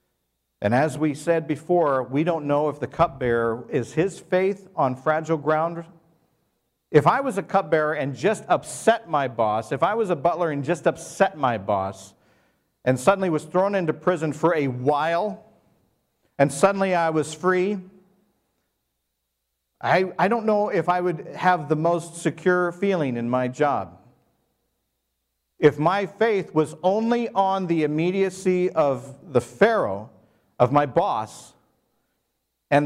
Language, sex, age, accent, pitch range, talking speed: English, male, 50-69, American, 125-180 Hz, 150 wpm